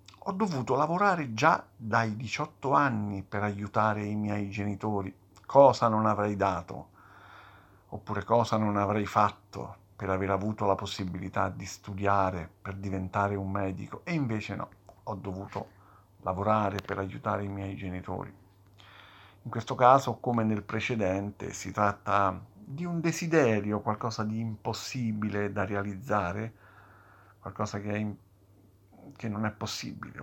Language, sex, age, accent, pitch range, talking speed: Italian, male, 50-69, native, 100-125 Hz, 135 wpm